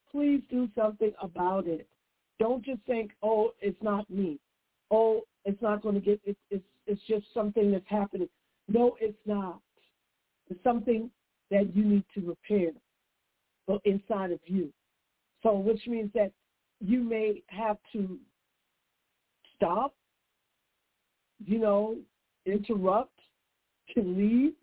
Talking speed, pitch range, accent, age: 125 wpm, 200-235 Hz, American, 60-79